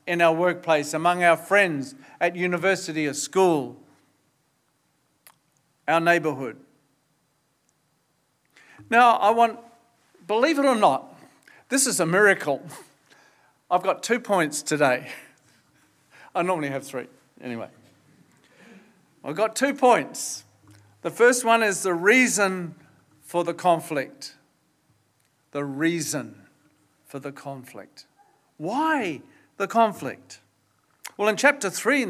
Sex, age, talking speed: male, 50-69, 110 wpm